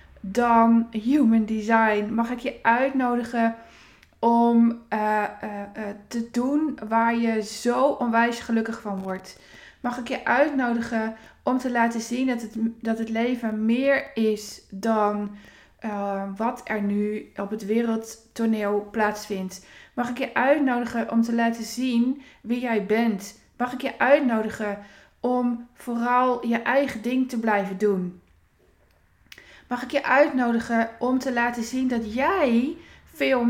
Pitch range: 210-245 Hz